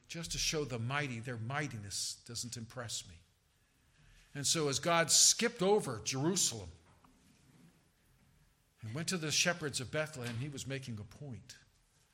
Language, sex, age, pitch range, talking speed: English, male, 50-69, 115-150 Hz, 145 wpm